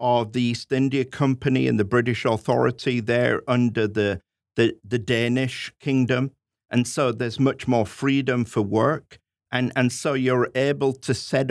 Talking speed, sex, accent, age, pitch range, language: 155 wpm, male, British, 50-69, 110-130 Hz, English